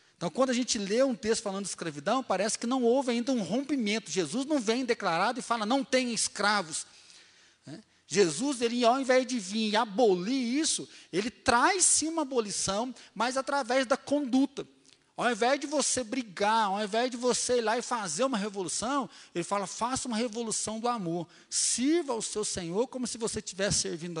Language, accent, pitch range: Portuguese, Brazilian, 195-245 Hz